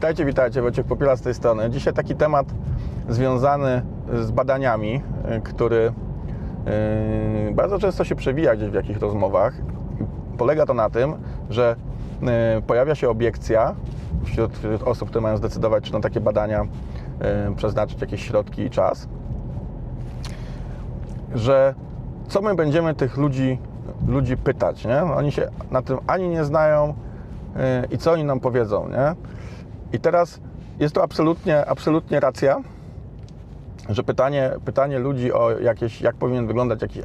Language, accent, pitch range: Polish, native, 115-135 Hz